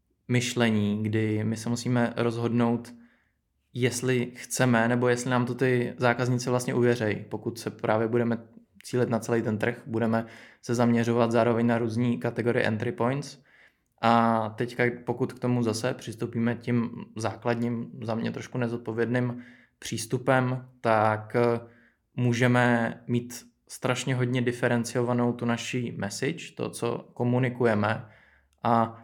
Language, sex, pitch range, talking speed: Czech, male, 115-125 Hz, 125 wpm